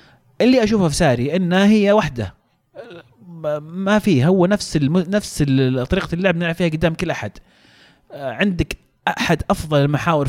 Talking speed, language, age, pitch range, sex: 140 wpm, Arabic, 30-49, 140-190 Hz, male